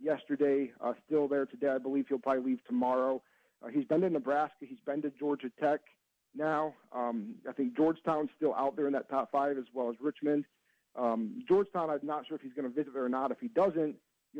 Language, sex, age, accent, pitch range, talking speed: English, male, 40-59, American, 130-155 Hz, 225 wpm